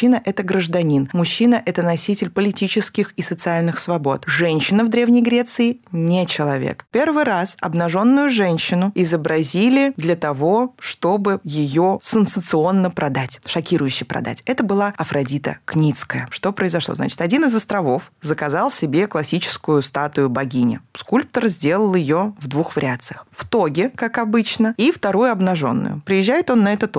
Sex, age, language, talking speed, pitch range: female, 20-39, Russian, 140 wpm, 160-230 Hz